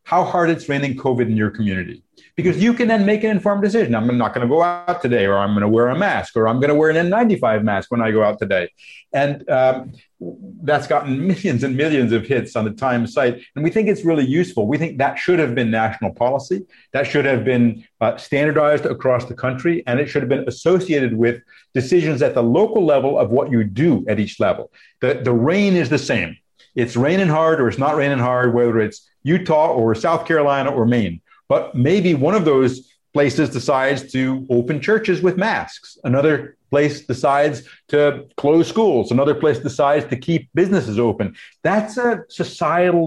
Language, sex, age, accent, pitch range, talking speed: English, male, 50-69, American, 120-165 Hz, 205 wpm